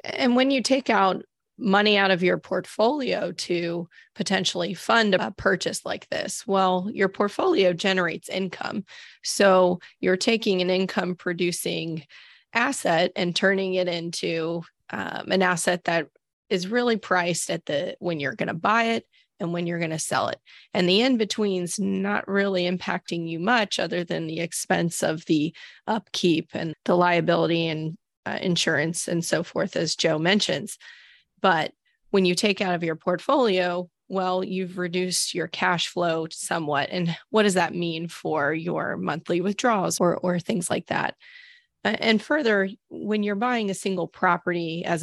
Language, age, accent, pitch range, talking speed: English, 20-39, American, 170-200 Hz, 160 wpm